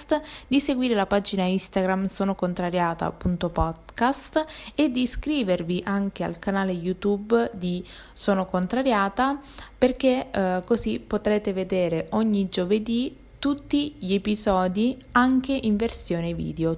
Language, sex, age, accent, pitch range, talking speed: Italian, female, 20-39, native, 185-245 Hz, 110 wpm